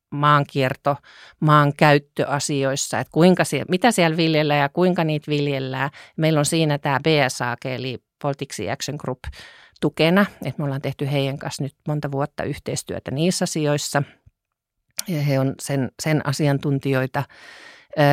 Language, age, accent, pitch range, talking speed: Finnish, 40-59, native, 135-160 Hz, 130 wpm